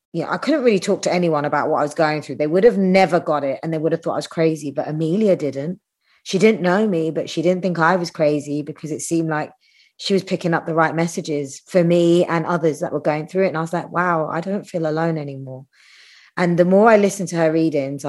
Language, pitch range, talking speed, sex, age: English, 155-205 Hz, 260 wpm, female, 20-39